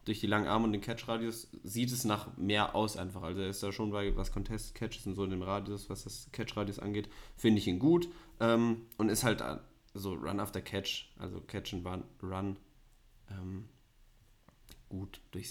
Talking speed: 170 wpm